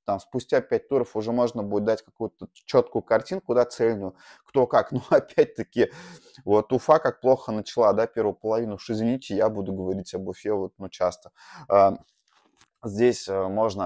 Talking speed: 170 wpm